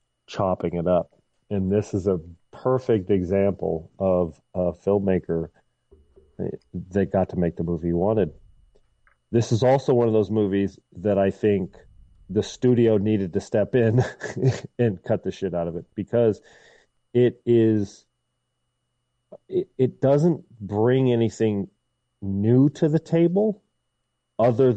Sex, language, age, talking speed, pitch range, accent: male, English, 40-59, 135 wpm, 90-120 Hz, American